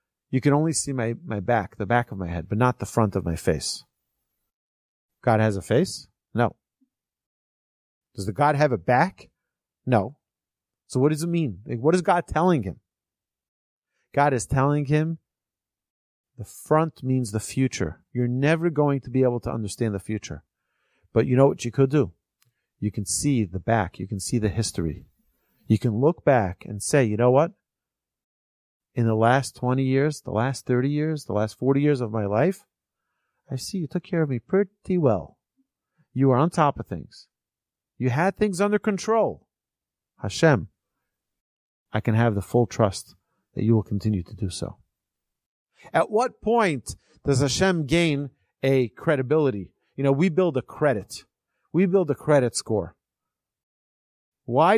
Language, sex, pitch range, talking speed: English, male, 105-150 Hz, 170 wpm